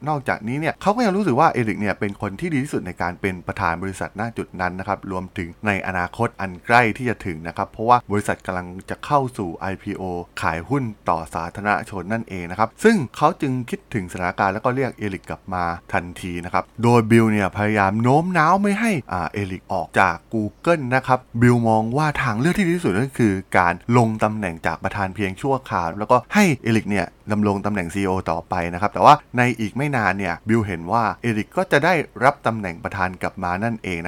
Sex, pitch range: male, 95-125 Hz